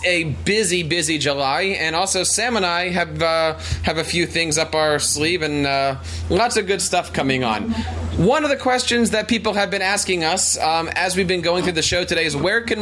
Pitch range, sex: 140-185 Hz, male